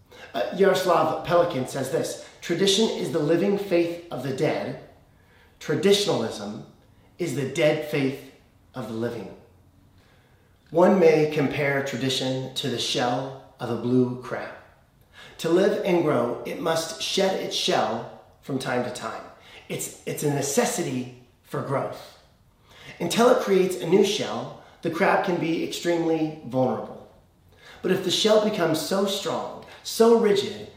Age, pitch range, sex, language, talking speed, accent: 30-49, 125-175 Hz, male, English, 140 wpm, American